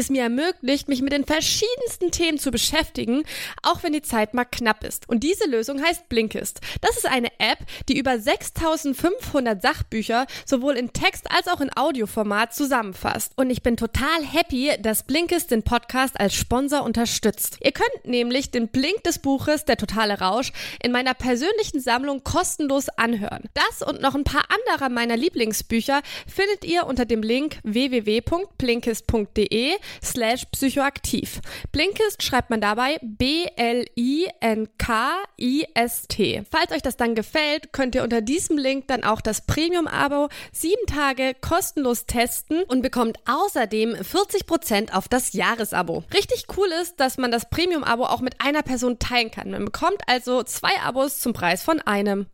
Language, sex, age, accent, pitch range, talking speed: German, female, 20-39, German, 235-320 Hz, 150 wpm